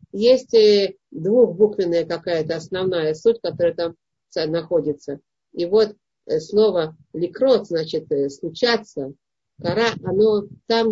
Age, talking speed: 50-69, 95 wpm